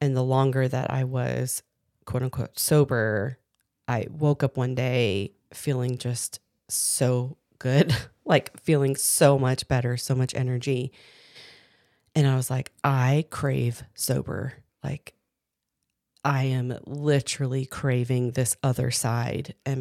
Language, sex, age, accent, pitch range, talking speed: English, female, 30-49, American, 125-140 Hz, 125 wpm